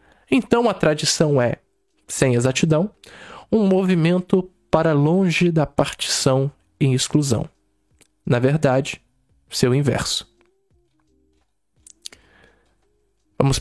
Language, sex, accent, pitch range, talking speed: Portuguese, male, Brazilian, 125-160 Hz, 85 wpm